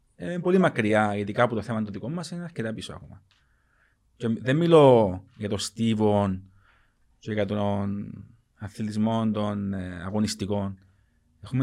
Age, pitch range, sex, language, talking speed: 30-49, 95-115 Hz, male, Greek, 150 wpm